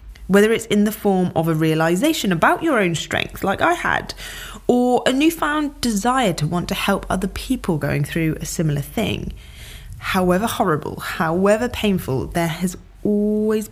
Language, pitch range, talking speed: English, 160-225 Hz, 160 wpm